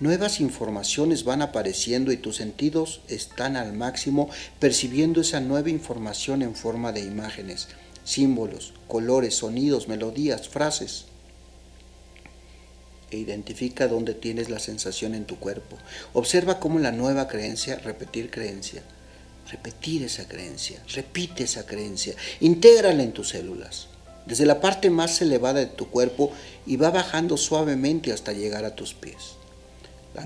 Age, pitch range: 50-69, 105-145 Hz